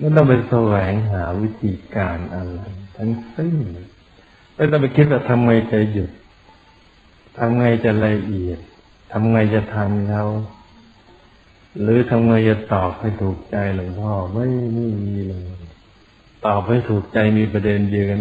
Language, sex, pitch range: Thai, male, 95-115 Hz